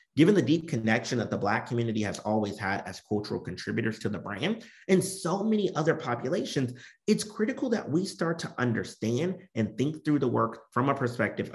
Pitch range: 115-165 Hz